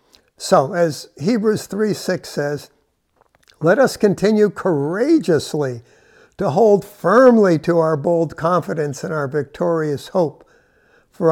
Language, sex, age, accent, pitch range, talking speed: English, male, 60-79, American, 165-215 Hz, 115 wpm